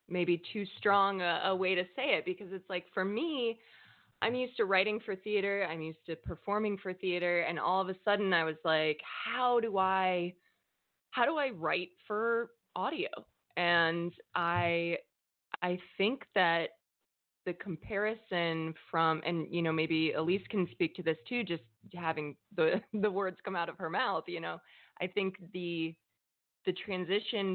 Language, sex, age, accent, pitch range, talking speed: English, female, 20-39, American, 160-190 Hz, 170 wpm